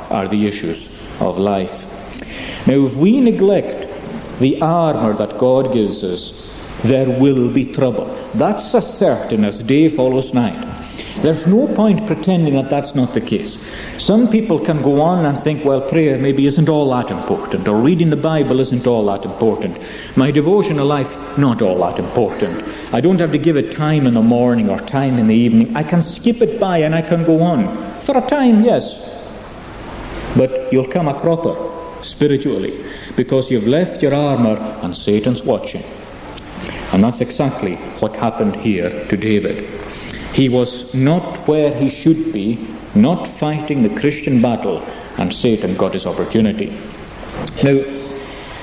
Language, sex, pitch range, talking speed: English, male, 120-160 Hz, 165 wpm